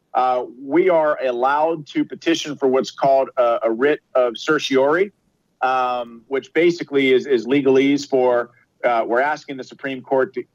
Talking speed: 160 wpm